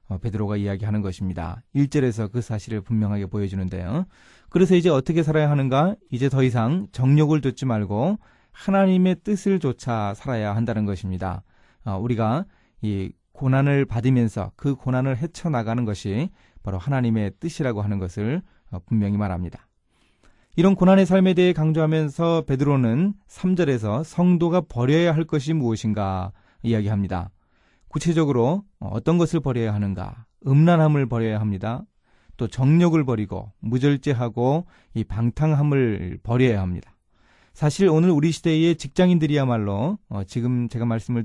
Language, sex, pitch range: Korean, male, 105-155 Hz